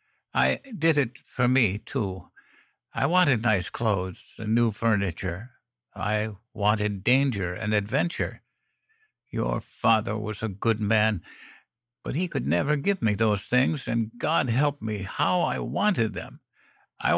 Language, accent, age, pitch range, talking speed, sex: English, American, 60-79, 100-125 Hz, 145 wpm, male